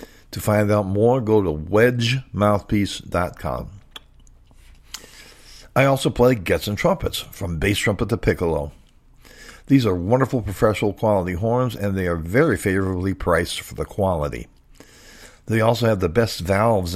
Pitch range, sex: 90-115 Hz, male